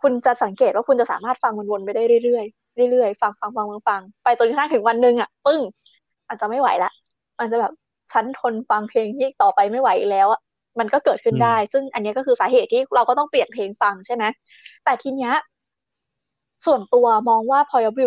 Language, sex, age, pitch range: Thai, female, 20-39, 230-295 Hz